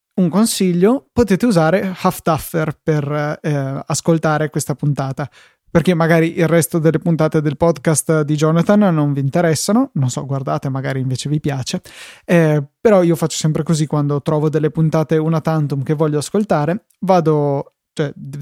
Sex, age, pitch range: male, 20-39, 150-175 Hz